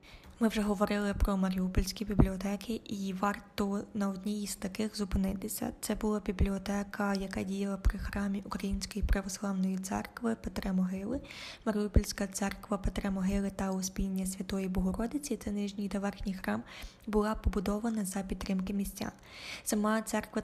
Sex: female